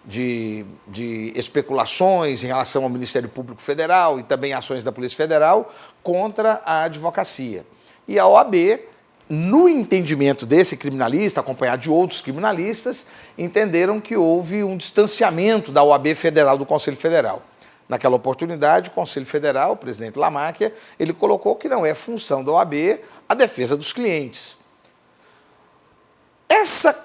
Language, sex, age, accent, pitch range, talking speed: Portuguese, male, 50-69, Brazilian, 145-210 Hz, 135 wpm